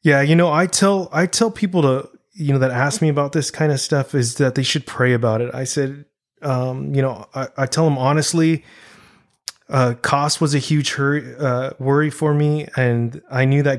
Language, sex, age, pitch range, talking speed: English, male, 20-39, 120-145 Hz, 220 wpm